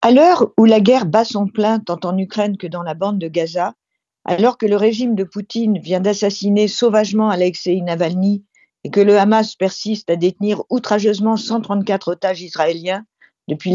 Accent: French